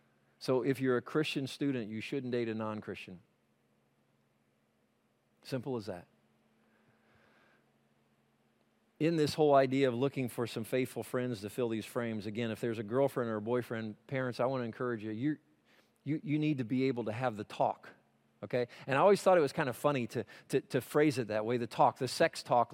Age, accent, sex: 40-59, American, male